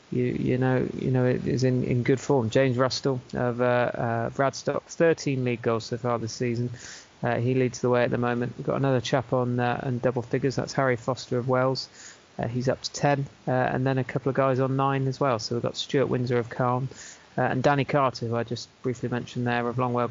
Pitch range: 120-135 Hz